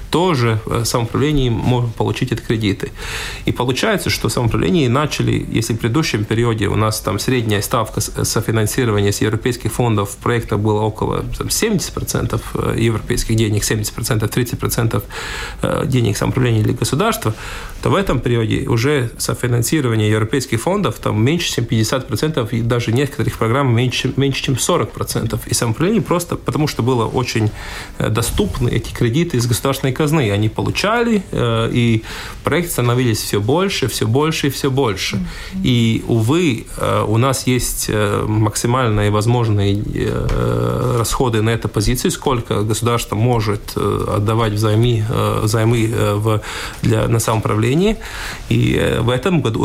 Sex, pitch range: male, 110-135 Hz